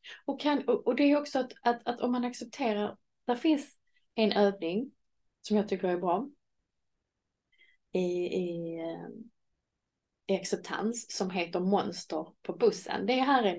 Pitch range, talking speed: 180-240 Hz, 145 wpm